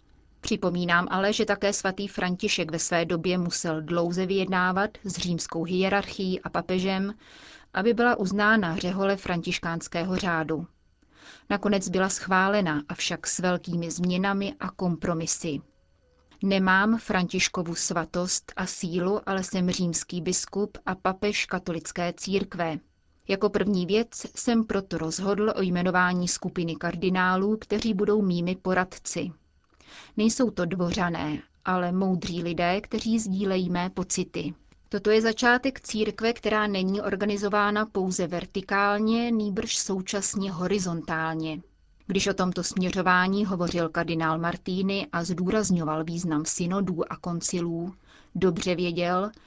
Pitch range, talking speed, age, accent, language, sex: 175-200 Hz, 115 wpm, 30-49, native, Czech, female